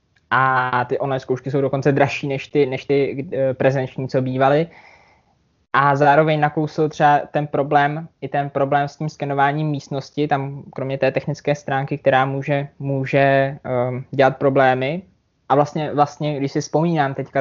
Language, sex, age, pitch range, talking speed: Czech, male, 20-39, 130-145 Hz, 160 wpm